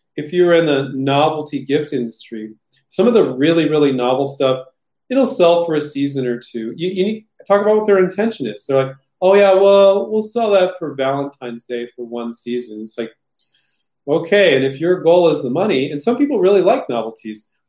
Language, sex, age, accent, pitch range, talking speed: English, male, 30-49, American, 135-185 Hz, 205 wpm